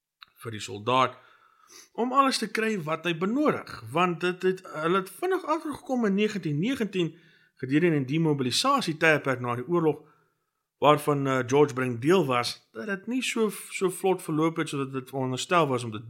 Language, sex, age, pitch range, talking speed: English, male, 50-69, 130-175 Hz, 180 wpm